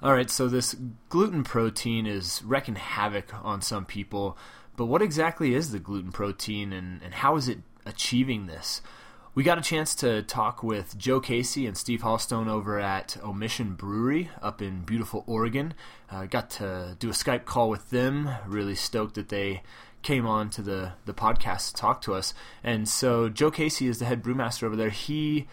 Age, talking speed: 20-39, 190 wpm